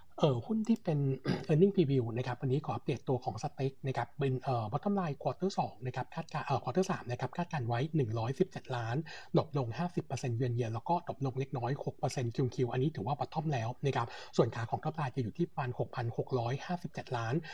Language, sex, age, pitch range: Thai, male, 60-79, 125-160 Hz